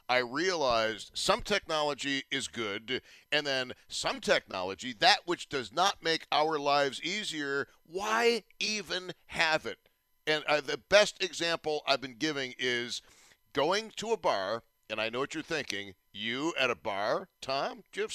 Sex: male